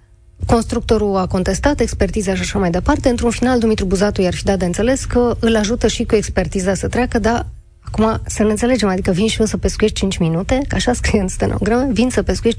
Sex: female